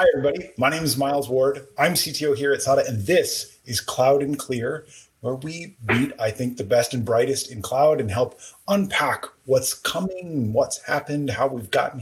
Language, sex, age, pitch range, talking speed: English, male, 30-49, 105-140 Hz, 195 wpm